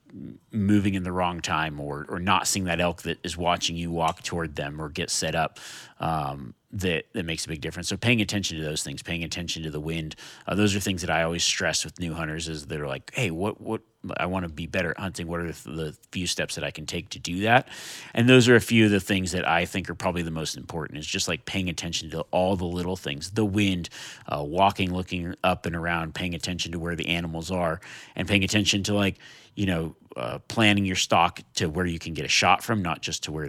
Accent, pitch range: American, 80-100 Hz